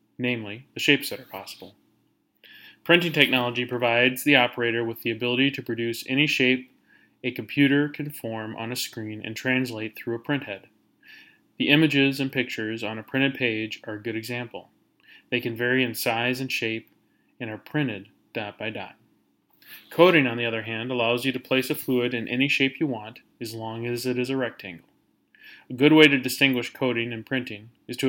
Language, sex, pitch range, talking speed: English, male, 115-135 Hz, 190 wpm